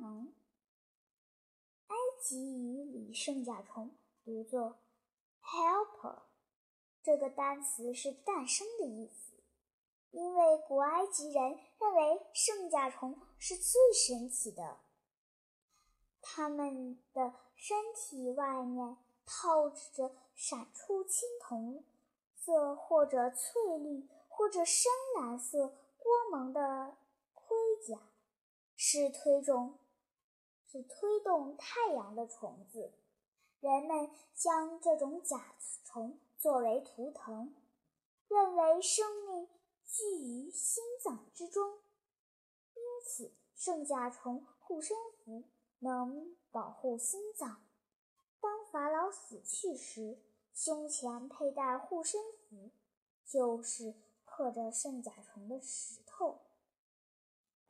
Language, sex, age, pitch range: Chinese, male, 10-29, 250-350 Hz